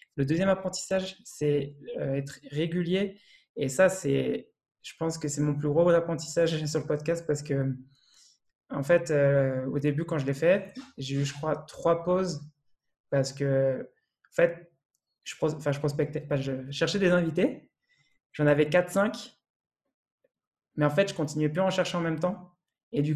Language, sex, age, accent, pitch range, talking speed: French, male, 20-39, French, 140-170 Hz, 175 wpm